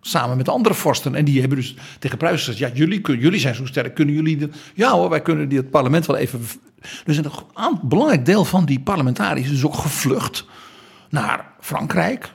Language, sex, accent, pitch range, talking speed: Dutch, male, Dutch, 135-180 Hz, 190 wpm